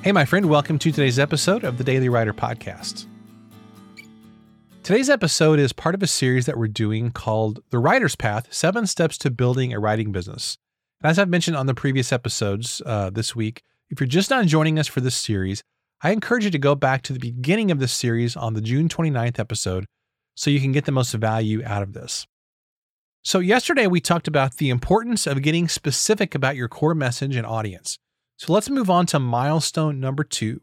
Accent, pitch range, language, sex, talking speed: American, 115-165 Hz, English, male, 200 wpm